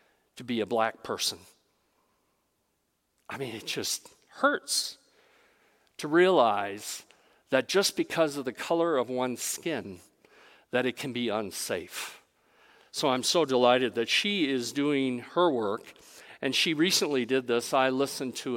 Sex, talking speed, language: male, 140 wpm, English